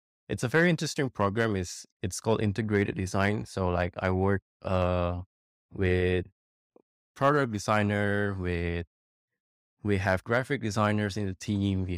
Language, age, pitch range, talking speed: English, 20-39, 90-105 Hz, 135 wpm